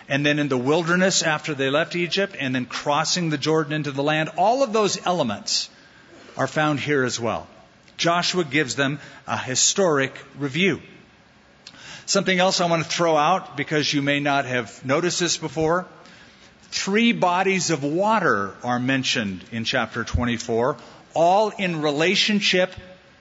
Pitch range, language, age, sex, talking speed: 145-185 Hz, English, 50-69, male, 155 wpm